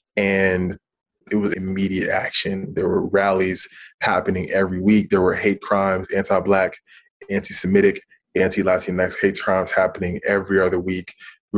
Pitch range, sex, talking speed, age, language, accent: 95-105 Hz, male, 130 wpm, 20-39, English, American